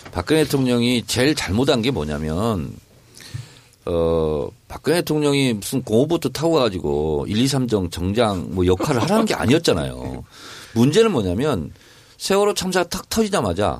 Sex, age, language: male, 40-59, Korean